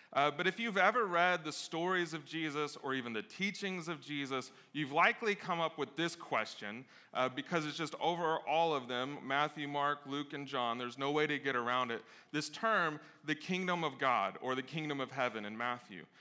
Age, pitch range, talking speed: 30-49, 140-175 Hz, 205 wpm